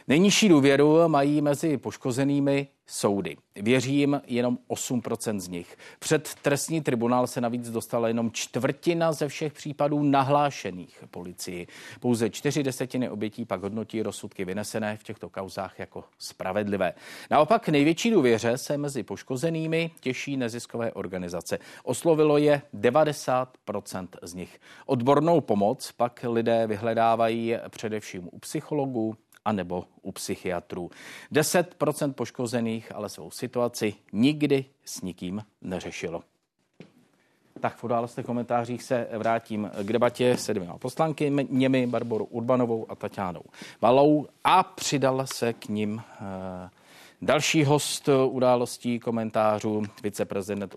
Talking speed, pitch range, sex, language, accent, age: 115 wpm, 110-140 Hz, male, Czech, native, 40-59